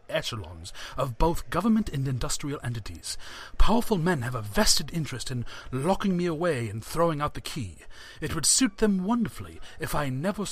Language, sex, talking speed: English, male, 170 wpm